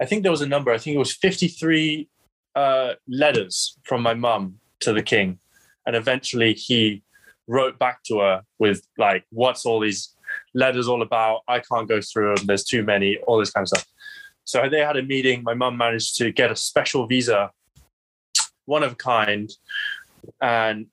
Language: English